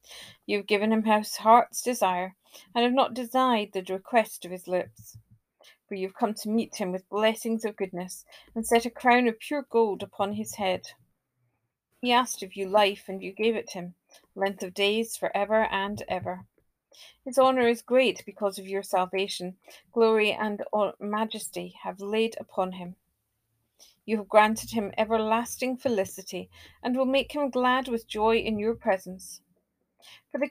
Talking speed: 170 wpm